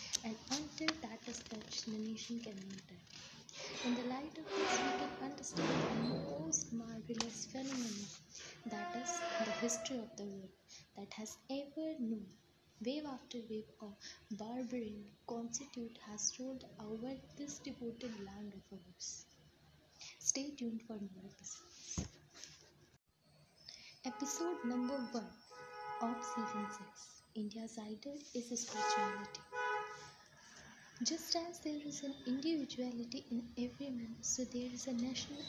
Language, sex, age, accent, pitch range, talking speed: English, female, 20-39, Indian, 220-270 Hz, 125 wpm